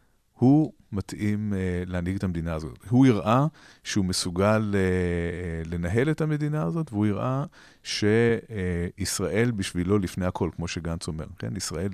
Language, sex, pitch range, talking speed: Hebrew, male, 90-115 Hz, 125 wpm